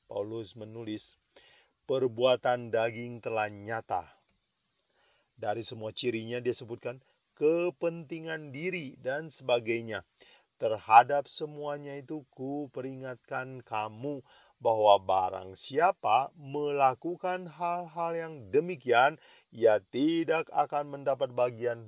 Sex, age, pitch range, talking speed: male, 40-59, 120-145 Hz, 90 wpm